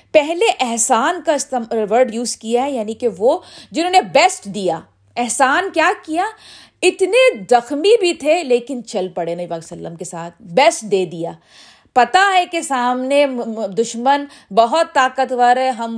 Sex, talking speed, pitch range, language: female, 150 wpm, 220-300 Hz, Urdu